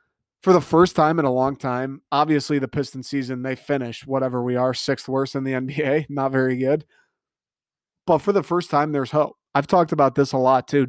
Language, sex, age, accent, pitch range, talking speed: English, male, 20-39, American, 130-155 Hz, 215 wpm